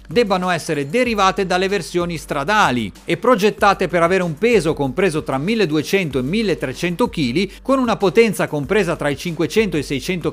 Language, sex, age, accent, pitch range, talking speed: Italian, male, 40-59, native, 155-205 Hz, 165 wpm